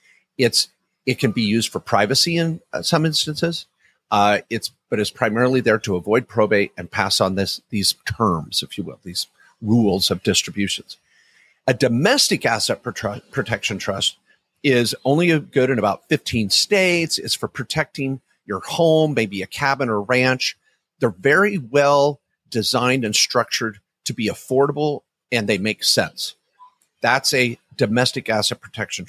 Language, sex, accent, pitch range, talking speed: English, male, American, 110-145 Hz, 155 wpm